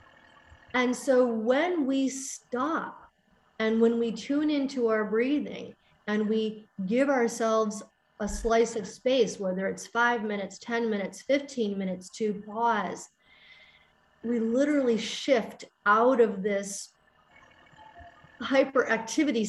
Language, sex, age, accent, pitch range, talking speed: English, female, 40-59, American, 205-250 Hz, 115 wpm